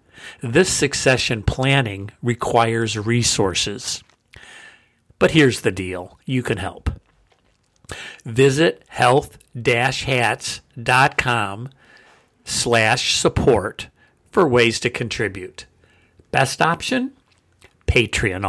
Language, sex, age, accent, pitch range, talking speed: English, male, 50-69, American, 110-135 Hz, 75 wpm